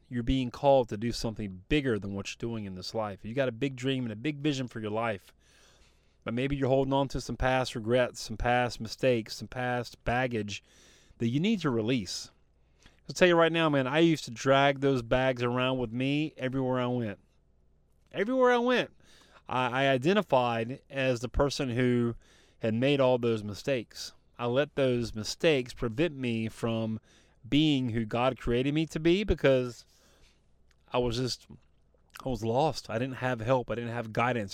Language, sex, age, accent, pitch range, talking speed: English, male, 30-49, American, 110-135 Hz, 190 wpm